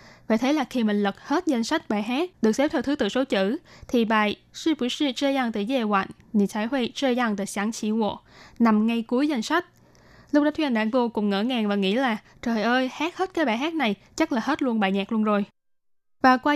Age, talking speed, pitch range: 10-29, 195 wpm, 210-260 Hz